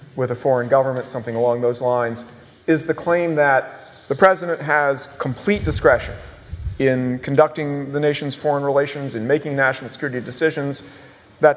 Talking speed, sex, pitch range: 150 wpm, male, 125-150 Hz